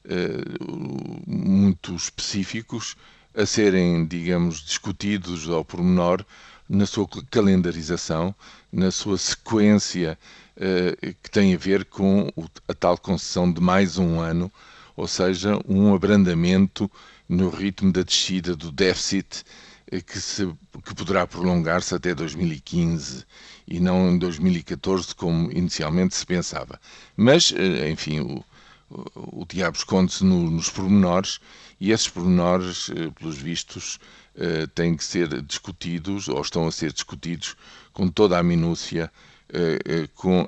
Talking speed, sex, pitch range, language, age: 115 wpm, male, 85-100 Hz, Portuguese, 50-69